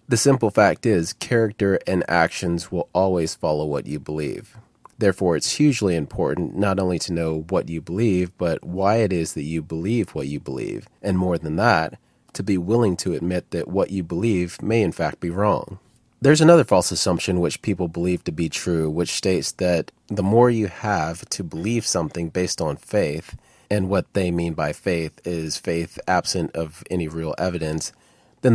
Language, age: English, 30-49